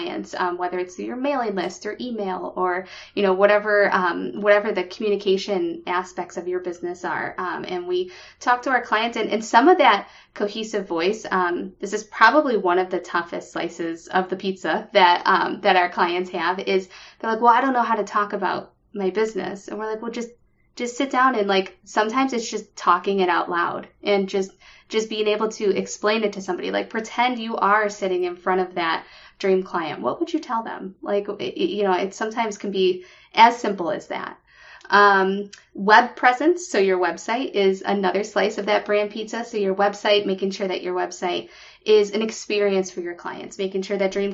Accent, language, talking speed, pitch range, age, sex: American, English, 205 wpm, 185-220 Hz, 20-39, female